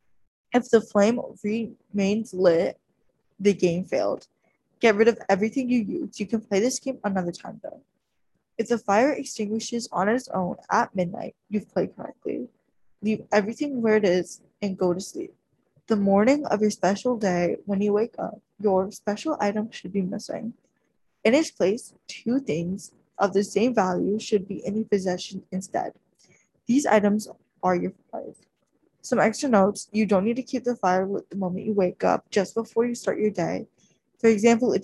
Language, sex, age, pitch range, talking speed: English, female, 10-29, 190-230 Hz, 180 wpm